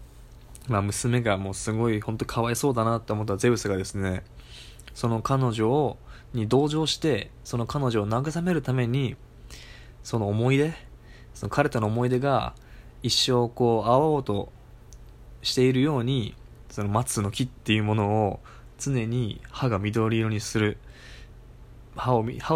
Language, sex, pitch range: Japanese, male, 100-125 Hz